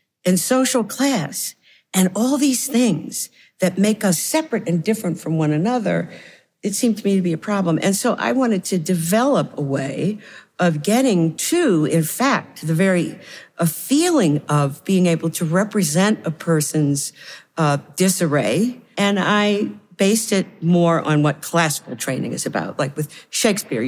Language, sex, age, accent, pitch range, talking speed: English, female, 50-69, American, 150-195 Hz, 160 wpm